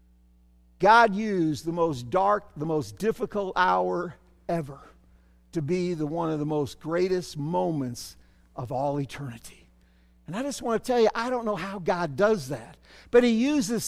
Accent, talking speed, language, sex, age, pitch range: American, 170 wpm, English, male, 50-69, 160-215 Hz